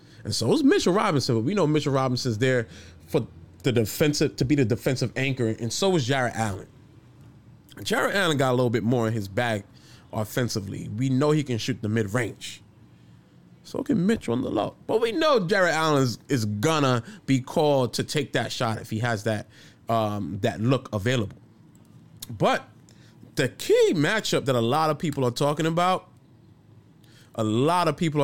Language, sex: English, male